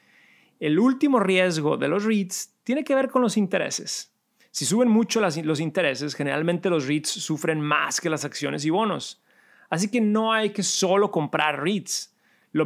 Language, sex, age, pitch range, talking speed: Spanish, male, 30-49, 150-195 Hz, 170 wpm